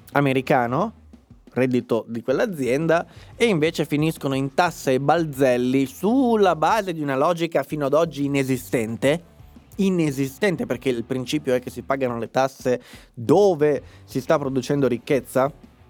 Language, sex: Italian, male